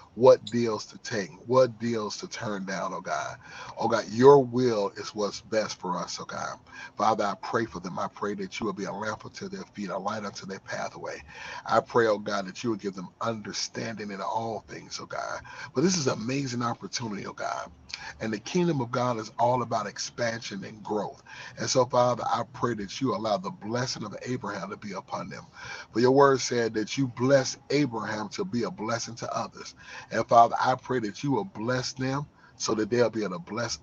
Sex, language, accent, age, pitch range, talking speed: male, English, American, 30-49, 110-135 Hz, 220 wpm